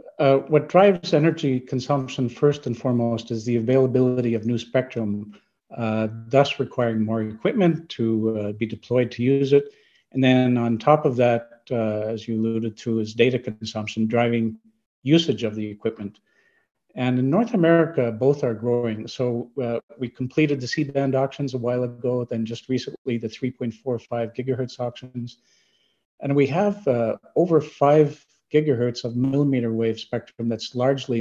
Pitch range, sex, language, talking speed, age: 115-135 Hz, male, English, 160 wpm, 50-69